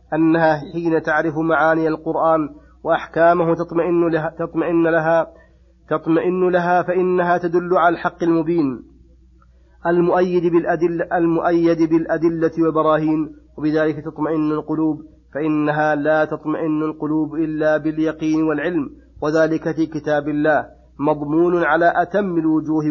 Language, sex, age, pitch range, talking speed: Arabic, male, 30-49, 150-170 Hz, 105 wpm